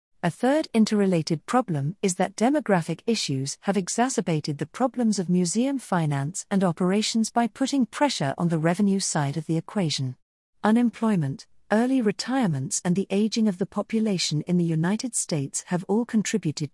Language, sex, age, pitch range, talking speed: English, female, 50-69, 155-220 Hz, 155 wpm